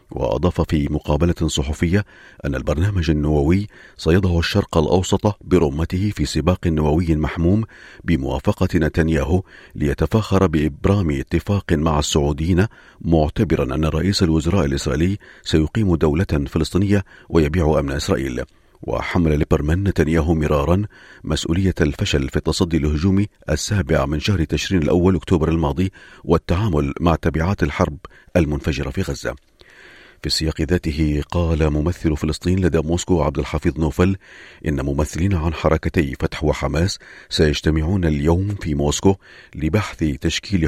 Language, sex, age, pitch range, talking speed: Arabic, male, 40-59, 75-90 Hz, 115 wpm